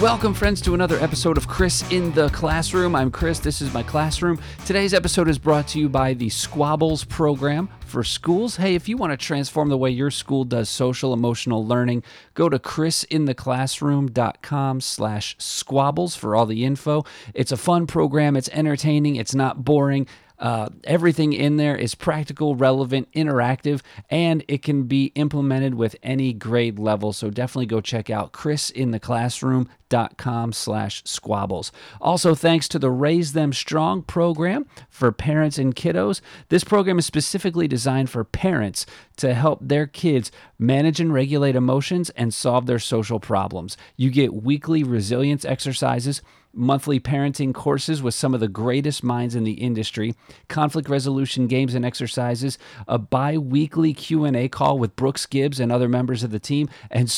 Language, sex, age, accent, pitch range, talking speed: English, male, 40-59, American, 120-155 Hz, 160 wpm